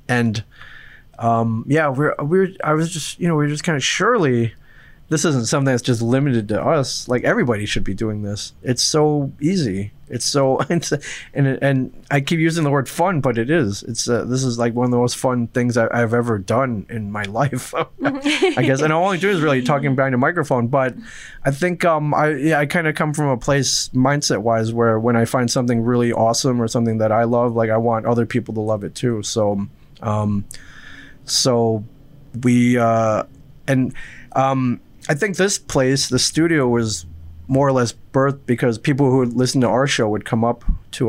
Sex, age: male, 20-39